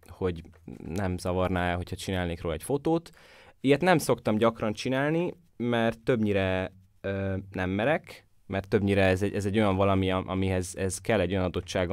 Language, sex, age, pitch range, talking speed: Hungarian, male, 20-39, 95-115 Hz, 160 wpm